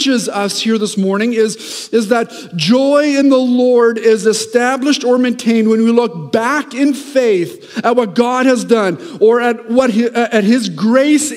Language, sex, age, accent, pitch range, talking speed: English, male, 50-69, American, 220-255 Hz, 175 wpm